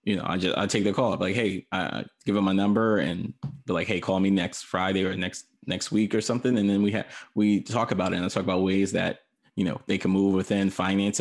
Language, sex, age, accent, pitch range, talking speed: English, male, 20-39, American, 95-110 Hz, 275 wpm